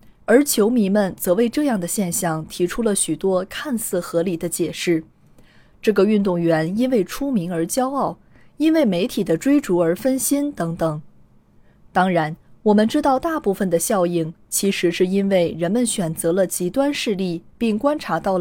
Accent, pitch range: native, 175-240 Hz